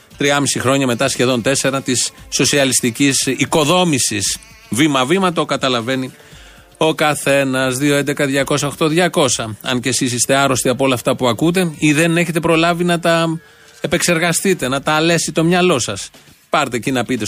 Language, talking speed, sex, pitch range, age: Greek, 150 wpm, male, 120-160 Hz, 30-49